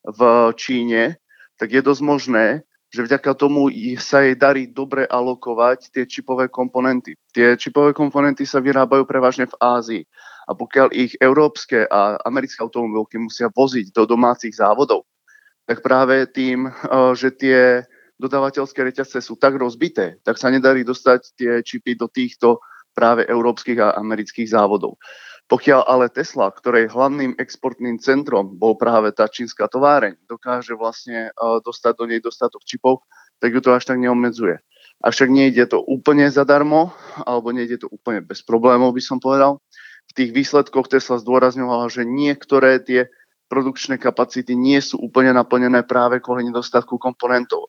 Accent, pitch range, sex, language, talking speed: native, 120-135 Hz, male, Czech, 145 wpm